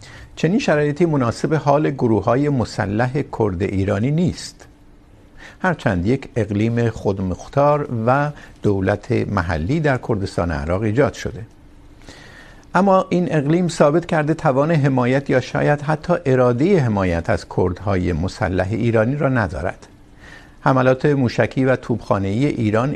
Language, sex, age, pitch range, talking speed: Urdu, male, 50-69, 100-140 Hz, 120 wpm